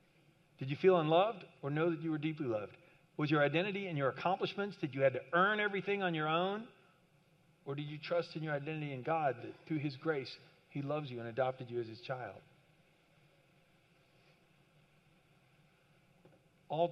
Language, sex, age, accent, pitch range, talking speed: English, male, 40-59, American, 130-170 Hz, 175 wpm